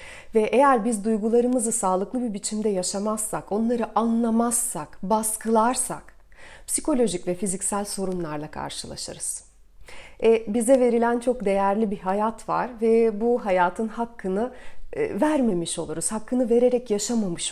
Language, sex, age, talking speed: Turkish, female, 30-49, 115 wpm